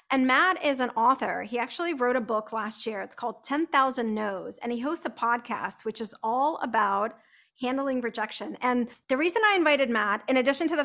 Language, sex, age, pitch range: English, female, 40-59, 225-280 Hz